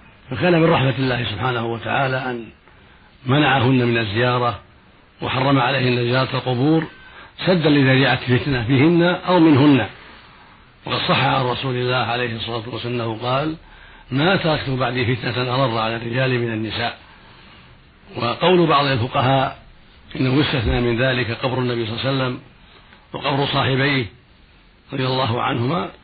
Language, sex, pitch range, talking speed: Arabic, male, 115-140 Hz, 130 wpm